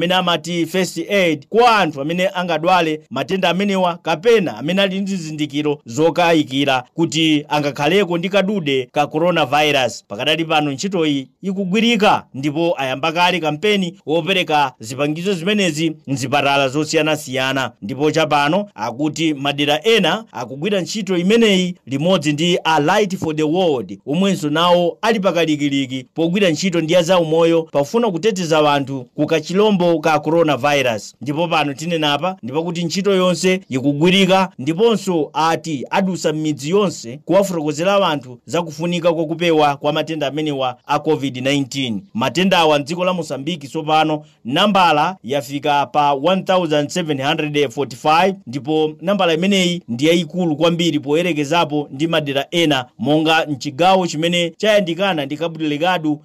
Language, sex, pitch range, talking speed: English, male, 150-180 Hz, 130 wpm